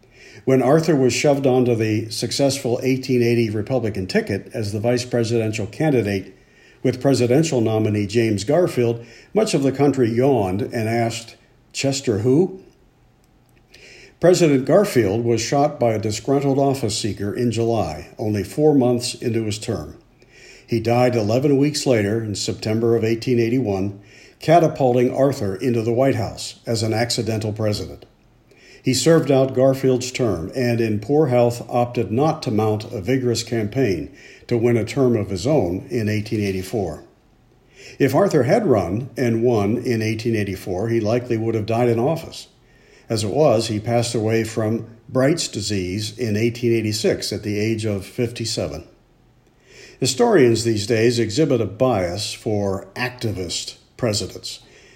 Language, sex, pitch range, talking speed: English, male, 110-130 Hz, 140 wpm